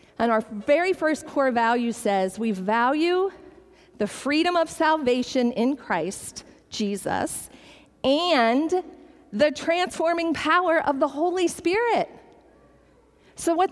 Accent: American